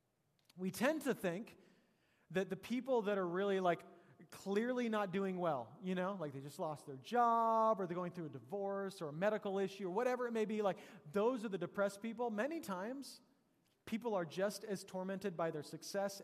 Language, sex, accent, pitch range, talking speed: English, male, American, 175-220 Hz, 200 wpm